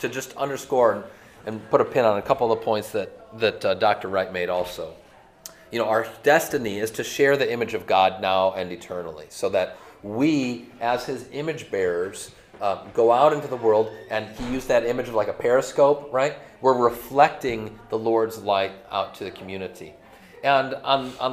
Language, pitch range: English, 110-135 Hz